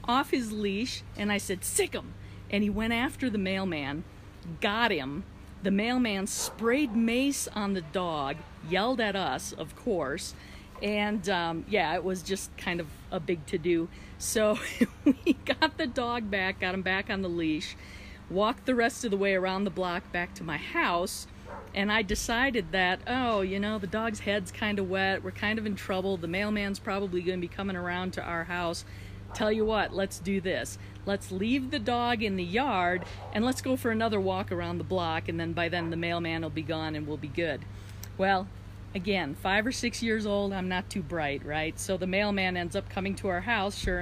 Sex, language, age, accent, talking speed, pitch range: female, English, 50-69, American, 205 wpm, 175-220 Hz